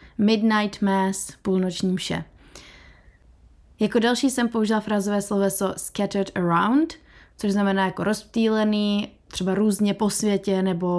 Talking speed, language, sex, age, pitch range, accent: 115 wpm, Czech, female, 20-39, 195-230 Hz, native